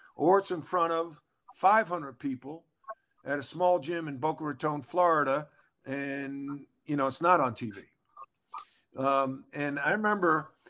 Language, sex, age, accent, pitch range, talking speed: English, male, 50-69, American, 130-160 Hz, 145 wpm